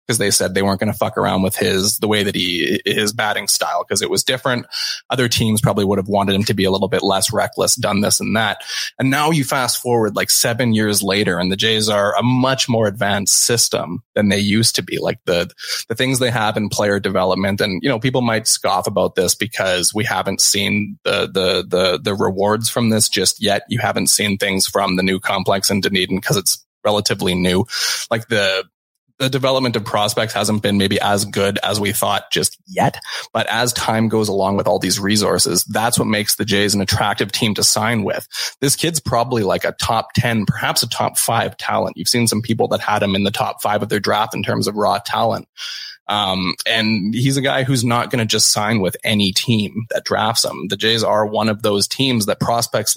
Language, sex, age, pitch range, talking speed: English, male, 20-39, 100-115 Hz, 225 wpm